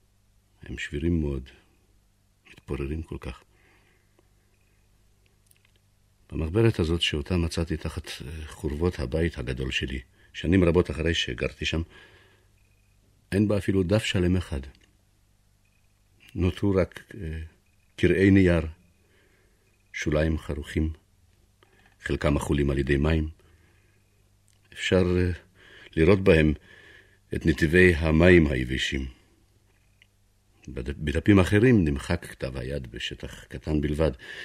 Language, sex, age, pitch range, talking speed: Hebrew, male, 60-79, 80-100 Hz, 95 wpm